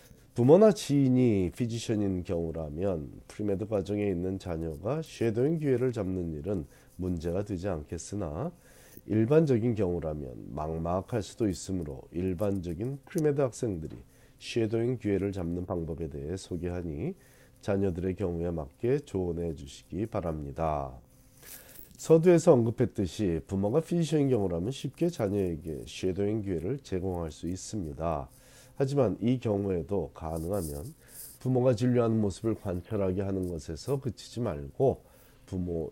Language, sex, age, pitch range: Korean, male, 40-59, 90-130 Hz